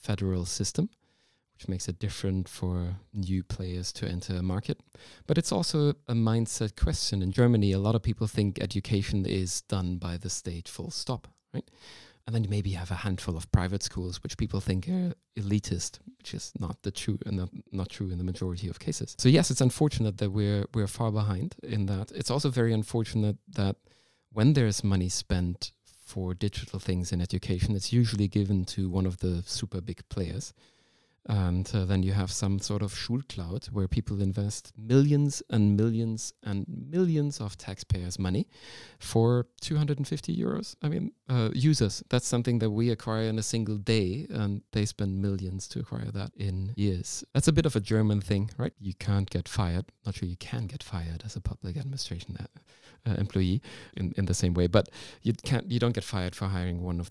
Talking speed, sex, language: 195 wpm, male, English